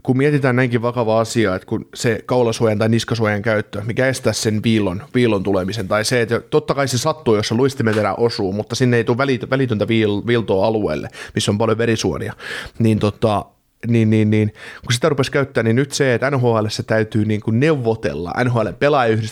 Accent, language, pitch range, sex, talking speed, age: native, Finnish, 110-135 Hz, male, 180 wpm, 30-49